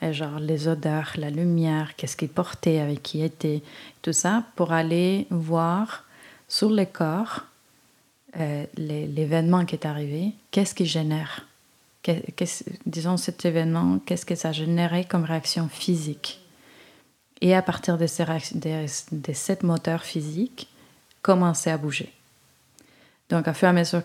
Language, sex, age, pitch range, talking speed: French, female, 30-49, 155-175 Hz, 145 wpm